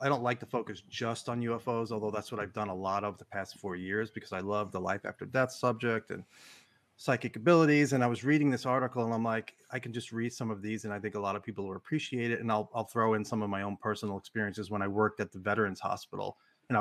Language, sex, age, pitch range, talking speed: English, male, 30-49, 105-130 Hz, 270 wpm